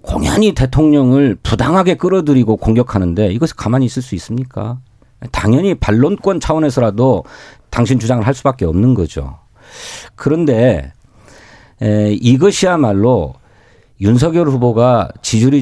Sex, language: male, Korean